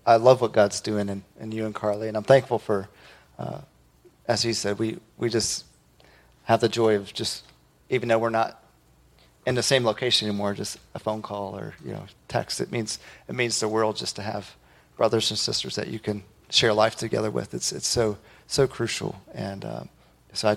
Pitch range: 105-120 Hz